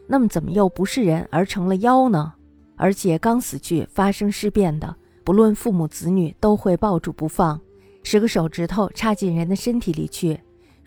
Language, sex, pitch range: Chinese, female, 165-210 Hz